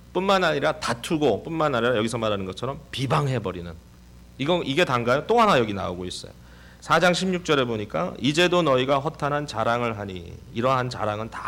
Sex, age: male, 40-59